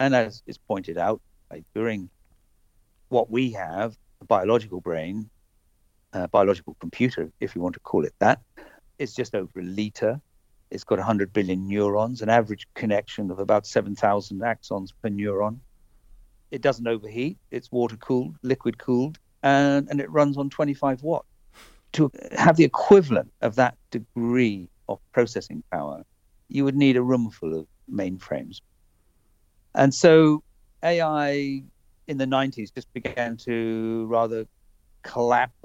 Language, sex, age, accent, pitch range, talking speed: English, male, 50-69, British, 95-125 Hz, 140 wpm